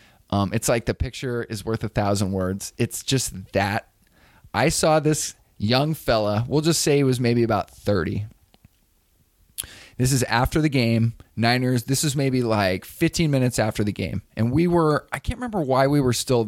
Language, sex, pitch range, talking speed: English, male, 105-145 Hz, 185 wpm